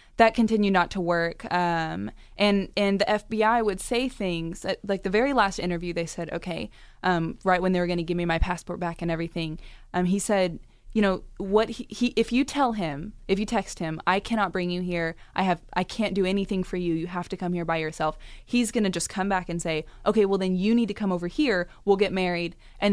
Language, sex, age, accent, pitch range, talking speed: English, female, 20-39, American, 170-205 Hz, 245 wpm